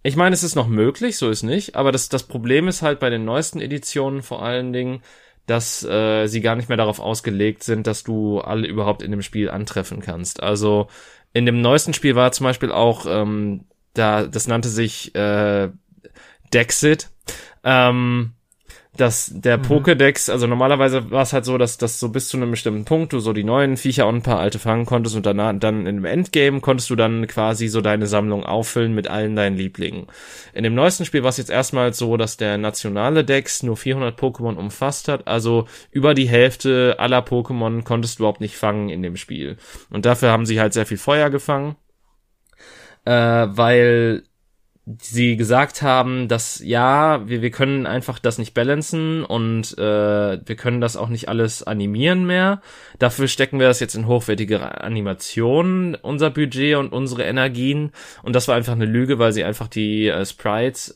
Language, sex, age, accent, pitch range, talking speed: German, male, 20-39, German, 110-130 Hz, 190 wpm